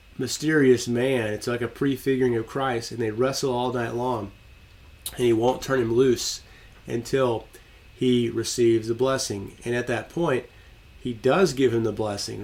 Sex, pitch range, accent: male, 115-140 Hz, American